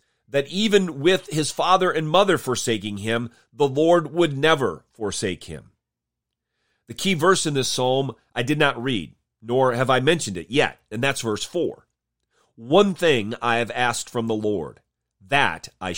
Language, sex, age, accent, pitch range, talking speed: English, male, 40-59, American, 105-150 Hz, 170 wpm